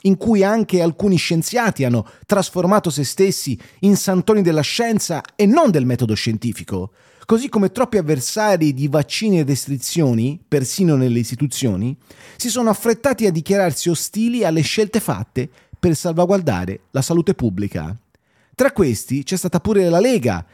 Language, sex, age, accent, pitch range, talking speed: Italian, male, 30-49, native, 120-195 Hz, 145 wpm